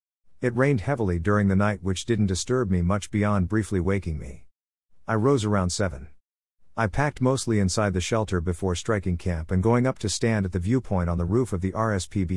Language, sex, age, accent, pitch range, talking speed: English, male, 50-69, American, 90-115 Hz, 205 wpm